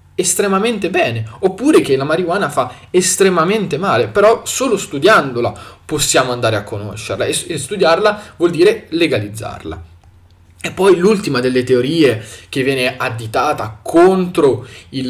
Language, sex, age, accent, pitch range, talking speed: Italian, male, 20-39, native, 105-140 Hz, 120 wpm